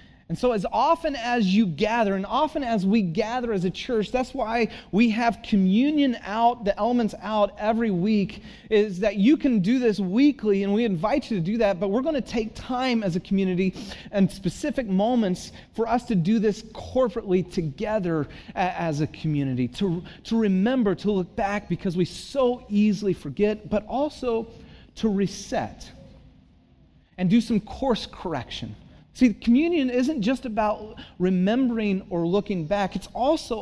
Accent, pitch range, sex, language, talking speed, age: American, 180-230 Hz, male, English, 165 wpm, 30-49